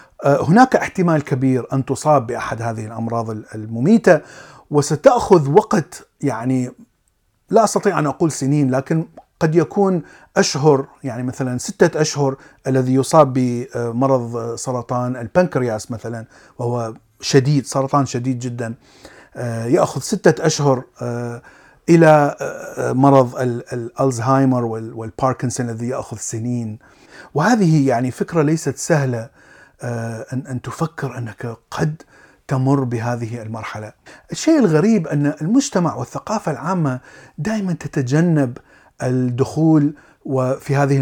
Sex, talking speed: male, 100 wpm